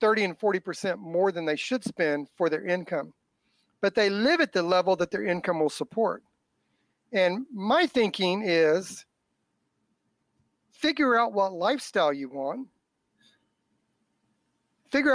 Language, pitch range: English, 185-250 Hz